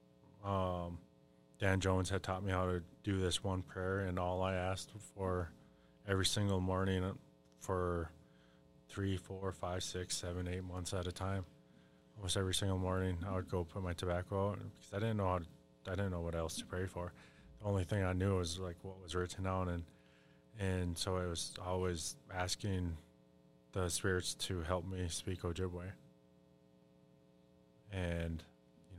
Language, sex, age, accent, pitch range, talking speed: English, male, 20-39, American, 80-95 Hz, 170 wpm